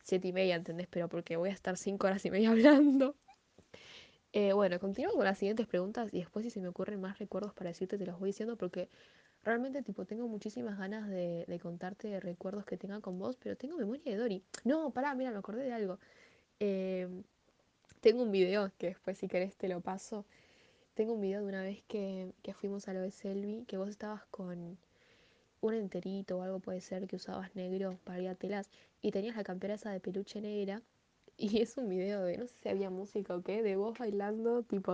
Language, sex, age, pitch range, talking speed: Spanish, female, 10-29, 190-230 Hz, 215 wpm